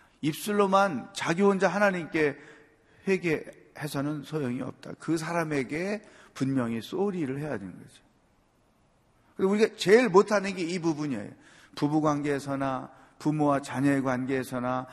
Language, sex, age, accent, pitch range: Korean, male, 40-59, native, 130-165 Hz